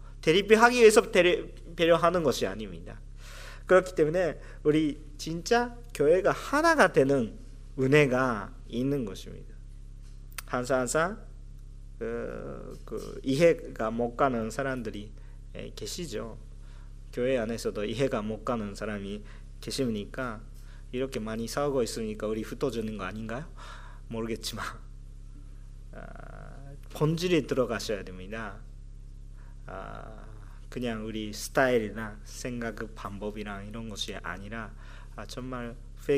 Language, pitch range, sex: Japanese, 110-130 Hz, male